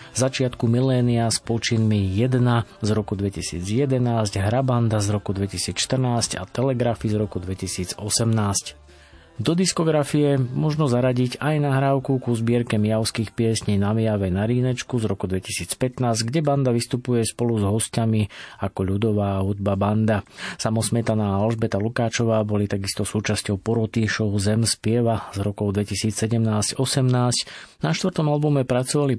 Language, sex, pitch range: Slovak, male, 105-125 Hz